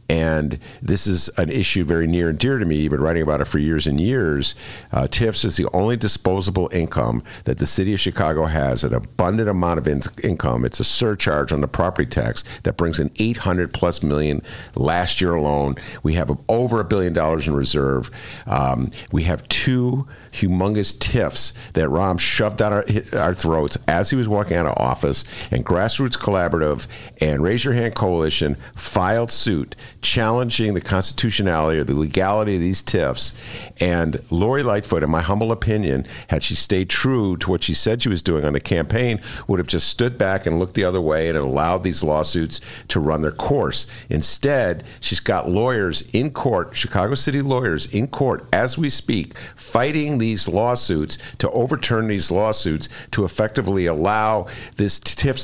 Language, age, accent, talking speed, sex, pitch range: English, 50-69, American, 180 wpm, male, 80-115 Hz